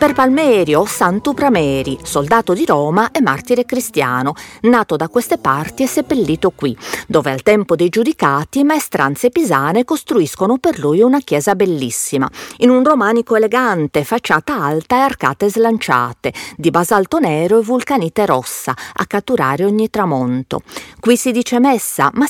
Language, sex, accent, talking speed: Italian, female, native, 145 wpm